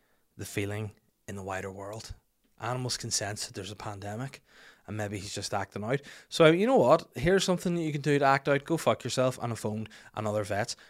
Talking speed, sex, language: 225 wpm, male, English